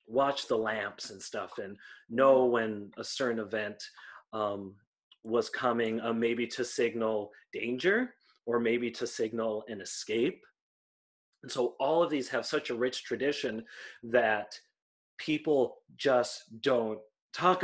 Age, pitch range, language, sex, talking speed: 30-49, 110-130 Hz, English, male, 135 wpm